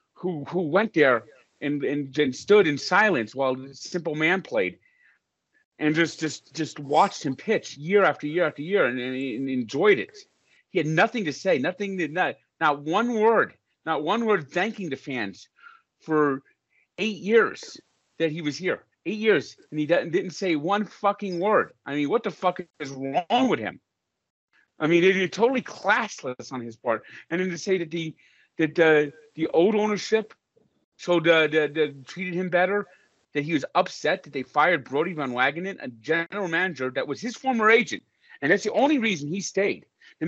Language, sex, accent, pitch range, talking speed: English, male, American, 150-220 Hz, 190 wpm